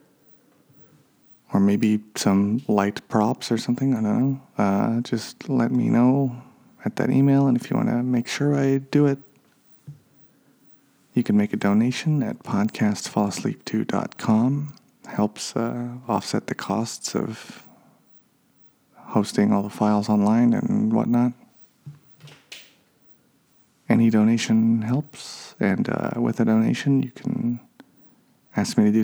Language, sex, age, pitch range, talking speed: English, male, 40-59, 105-140 Hz, 130 wpm